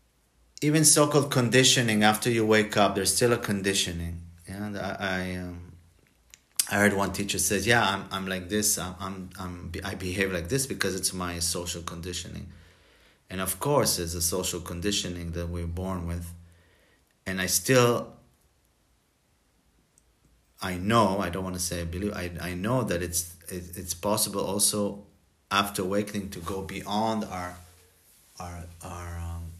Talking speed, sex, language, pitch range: 160 wpm, male, English, 90-105 Hz